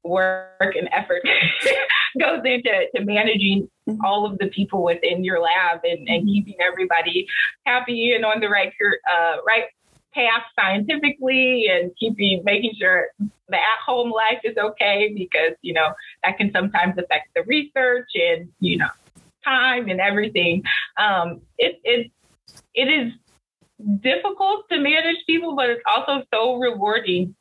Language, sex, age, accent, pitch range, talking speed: English, female, 20-39, American, 185-245 Hz, 145 wpm